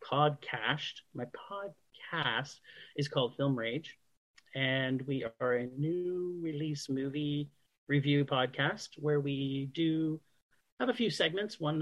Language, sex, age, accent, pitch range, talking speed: English, male, 40-59, American, 130-160 Hz, 120 wpm